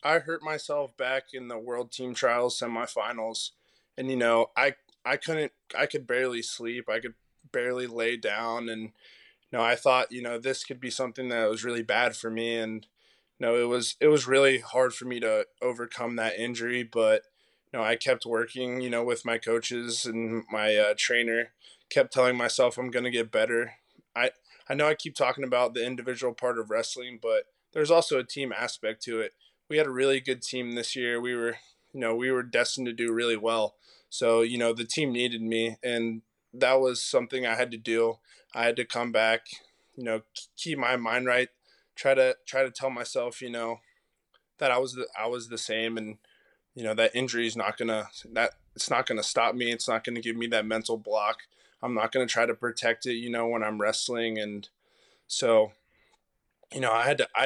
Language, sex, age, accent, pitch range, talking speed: English, male, 20-39, American, 115-125 Hz, 215 wpm